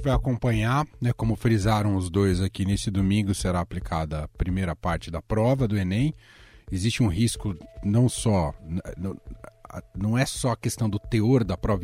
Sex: male